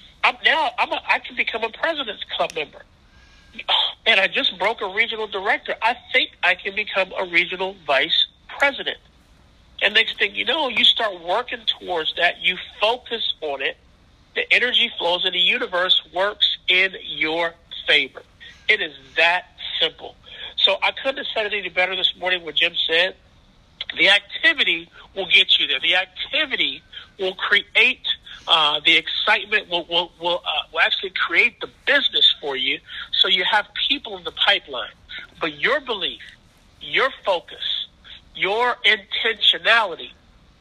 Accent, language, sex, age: American, English, male, 50-69